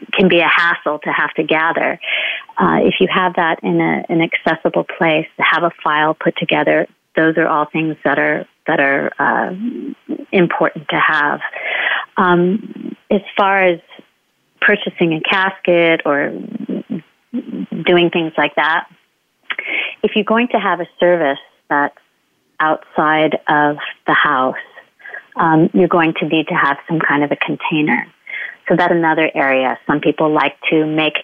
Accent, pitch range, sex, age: American, 150-185 Hz, female, 30-49